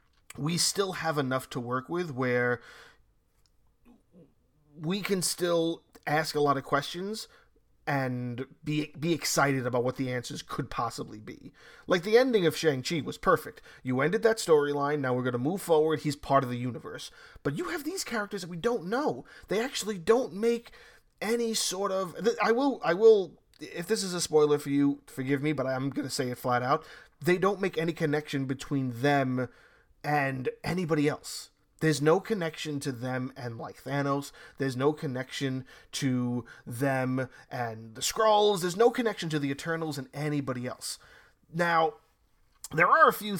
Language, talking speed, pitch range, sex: English, 175 wpm, 130-175 Hz, male